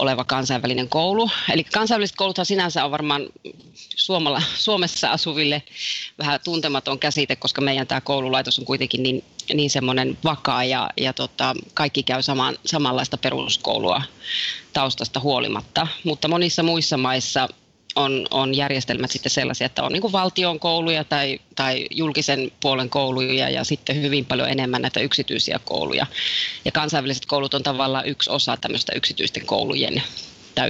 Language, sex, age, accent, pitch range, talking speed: Finnish, female, 30-49, native, 135-155 Hz, 135 wpm